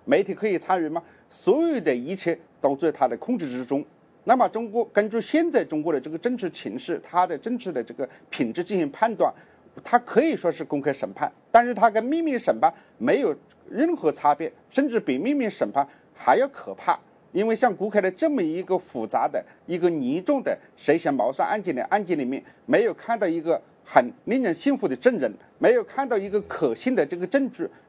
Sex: male